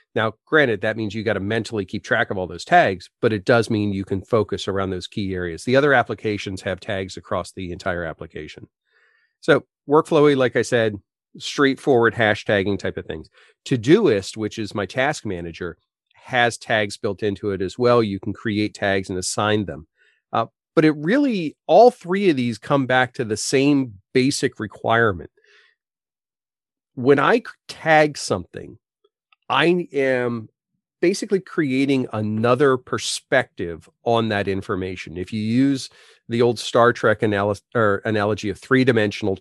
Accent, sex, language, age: American, male, English, 40-59